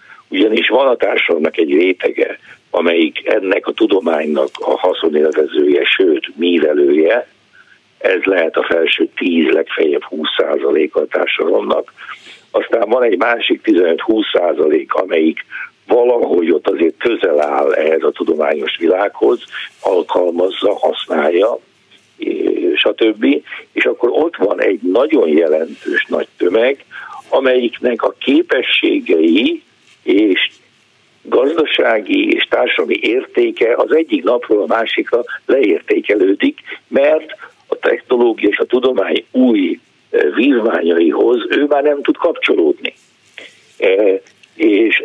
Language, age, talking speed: Hungarian, 60-79, 105 wpm